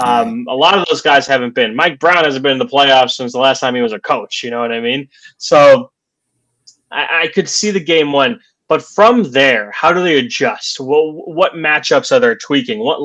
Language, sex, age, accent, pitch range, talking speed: English, male, 20-39, American, 130-185 Hz, 225 wpm